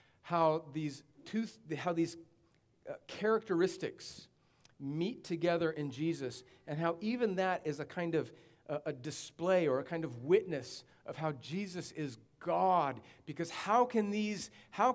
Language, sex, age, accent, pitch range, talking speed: English, male, 40-59, American, 135-175 Hz, 155 wpm